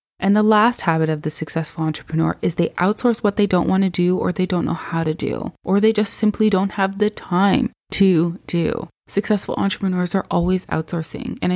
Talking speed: 210 wpm